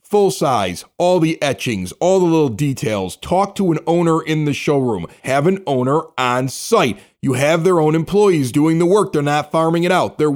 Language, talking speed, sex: English, 205 wpm, male